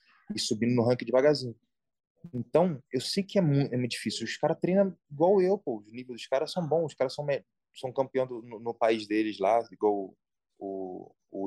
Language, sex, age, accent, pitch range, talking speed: English, male, 20-39, Brazilian, 105-145 Hz, 210 wpm